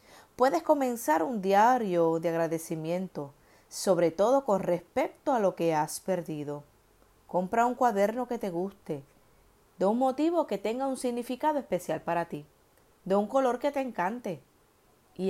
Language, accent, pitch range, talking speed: Spanish, American, 165-245 Hz, 150 wpm